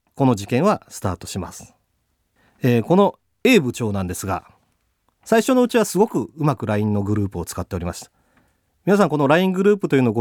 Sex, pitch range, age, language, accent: male, 95-155 Hz, 40-59, Japanese, native